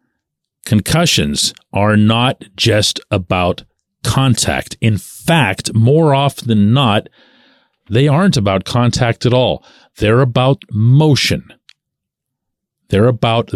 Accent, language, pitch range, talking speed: American, English, 105-145 Hz, 100 wpm